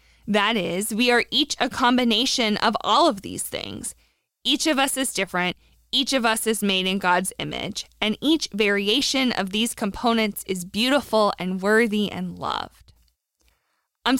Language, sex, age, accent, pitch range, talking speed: English, female, 20-39, American, 205-265 Hz, 160 wpm